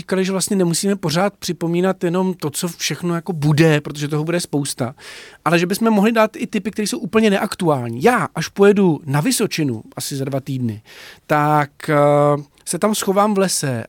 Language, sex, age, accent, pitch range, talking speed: Czech, male, 40-59, native, 150-185 Hz, 185 wpm